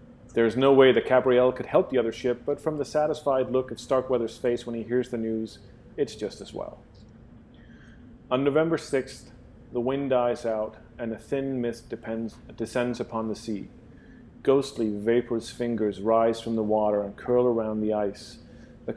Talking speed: 180 wpm